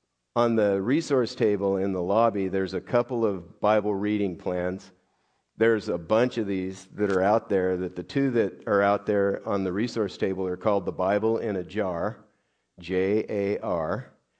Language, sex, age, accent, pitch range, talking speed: English, male, 50-69, American, 95-110 Hz, 175 wpm